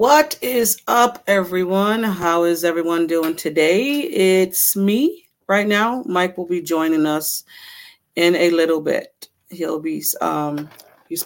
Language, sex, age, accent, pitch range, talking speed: English, female, 40-59, American, 170-210 Hz, 140 wpm